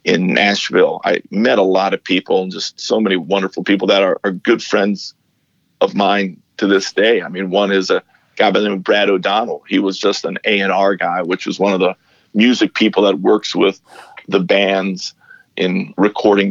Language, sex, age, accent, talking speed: English, male, 50-69, American, 200 wpm